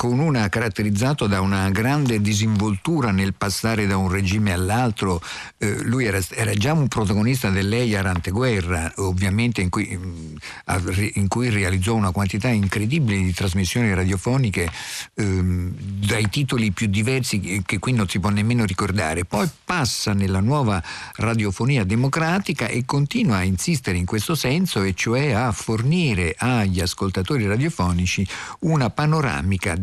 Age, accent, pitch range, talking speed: 50-69, native, 95-120 Hz, 135 wpm